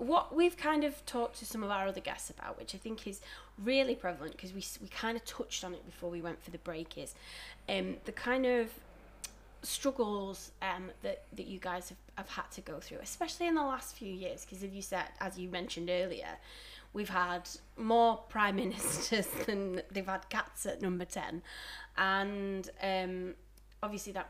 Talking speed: 195 wpm